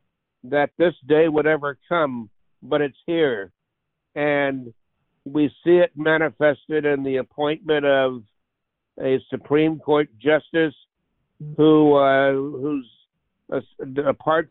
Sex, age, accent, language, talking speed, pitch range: male, 60-79, American, English, 110 wpm, 135-155 Hz